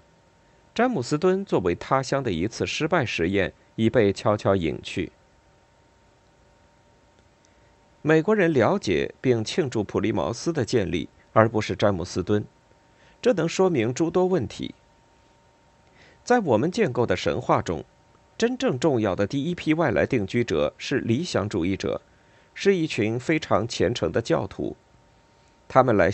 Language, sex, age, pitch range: Chinese, male, 50-69, 100-165 Hz